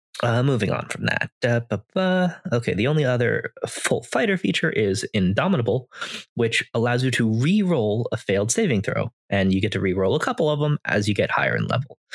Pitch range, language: 110-155 Hz, English